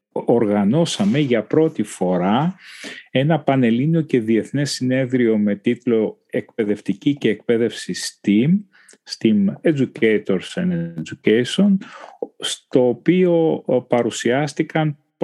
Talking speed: 85 wpm